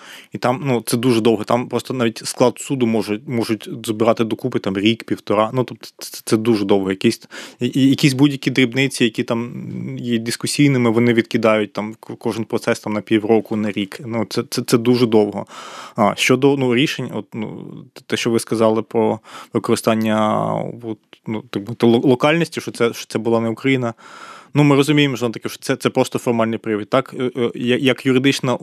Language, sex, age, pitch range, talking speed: Ukrainian, male, 20-39, 110-130 Hz, 180 wpm